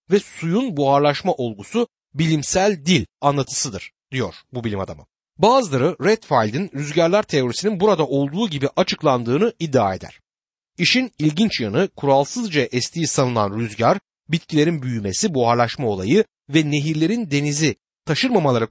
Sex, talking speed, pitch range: male, 115 wpm, 130-195 Hz